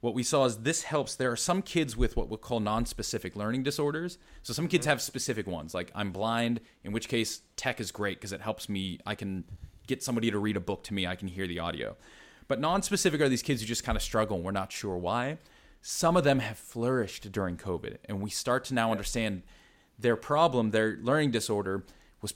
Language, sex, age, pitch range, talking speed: English, male, 30-49, 100-130 Hz, 235 wpm